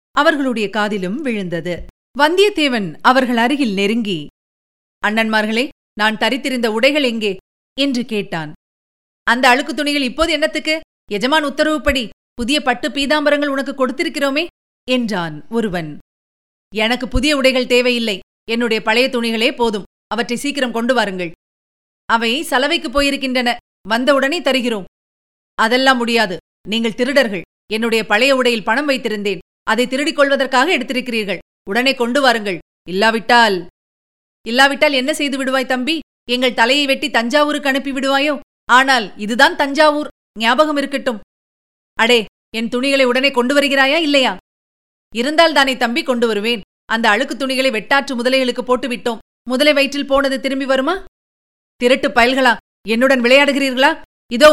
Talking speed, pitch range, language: 115 wpm, 220-275 Hz, Tamil